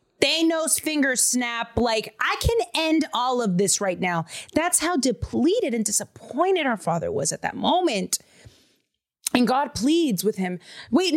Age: 30-49